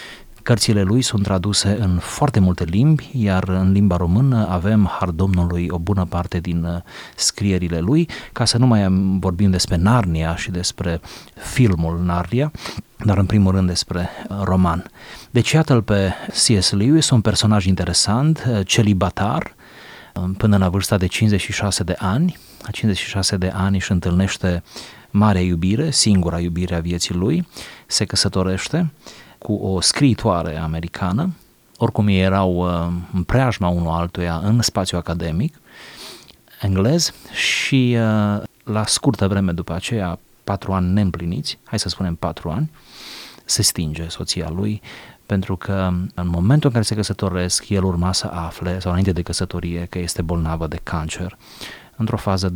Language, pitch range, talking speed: Romanian, 90-110 Hz, 145 wpm